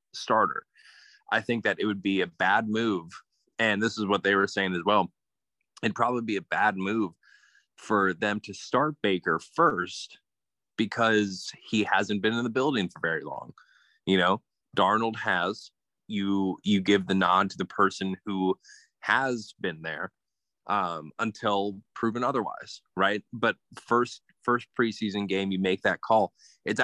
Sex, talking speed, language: male, 160 wpm, English